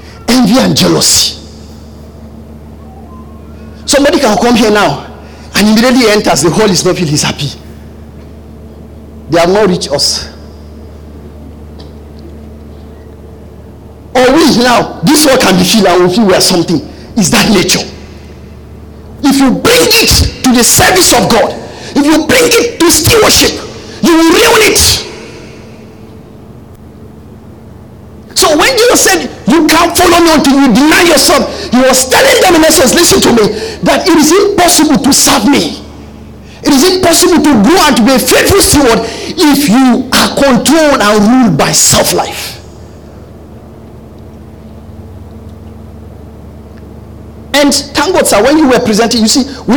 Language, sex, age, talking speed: English, male, 50-69, 140 wpm